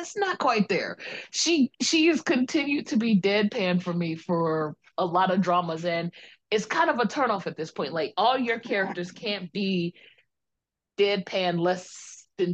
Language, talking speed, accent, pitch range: English, 170 wpm, American, 170-220 Hz